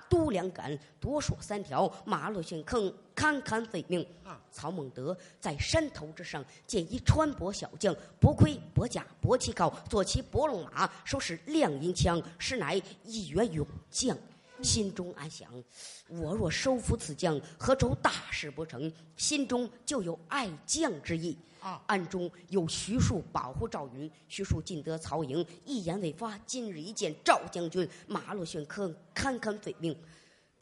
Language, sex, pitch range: Chinese, male, 155-220 Hz